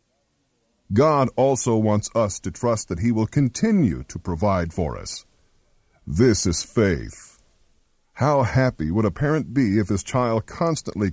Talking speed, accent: 145 wpm, American